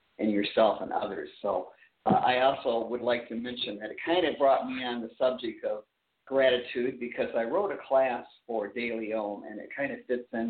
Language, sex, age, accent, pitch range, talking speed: English, male, 50-69, American, 110-135 Hz, 210 wpm